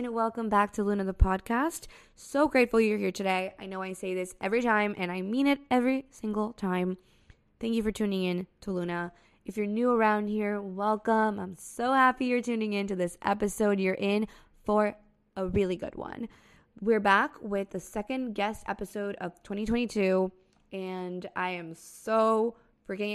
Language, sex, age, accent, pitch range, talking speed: English, female, 20-39, American, 185-220 Hz, 180 wpm